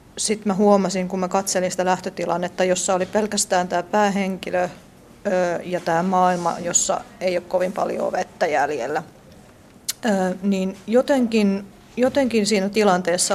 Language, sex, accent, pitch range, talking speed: Finnish, female, native, 180-205 Hz, 125 wpm